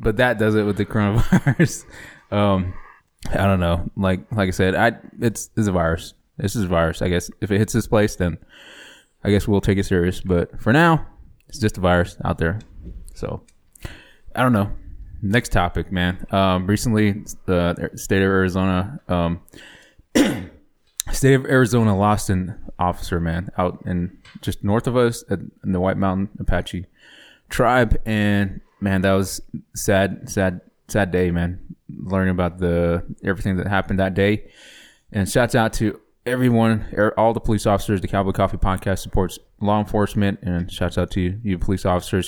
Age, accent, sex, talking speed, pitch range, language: 20-39, American, male, 170 wpm, 90-105 Hz, English